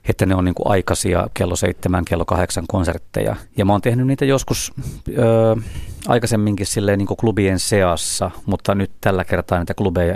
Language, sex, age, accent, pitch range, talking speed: Finnish, male, 30-49, native, 90-105 Hz, 165 wpm